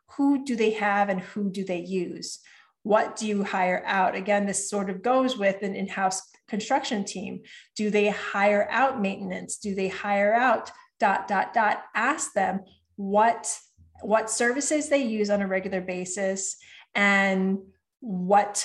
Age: 30-49